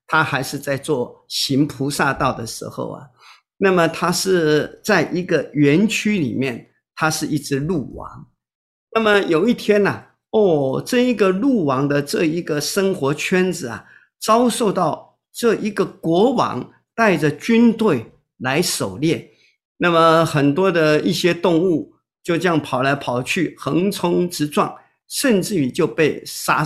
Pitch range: 135-190 Hz